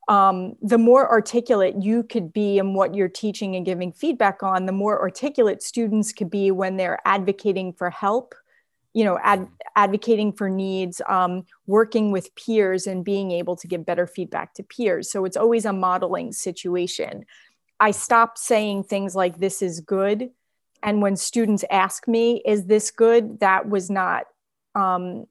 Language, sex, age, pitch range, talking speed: English, female, 30-49, 185-210 Hz, 170 wpm